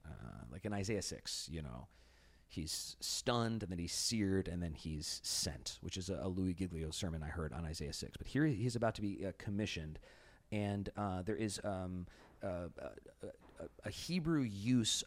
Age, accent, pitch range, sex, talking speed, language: 30-49, American, 80-105 Hz, male, 185 wpm, English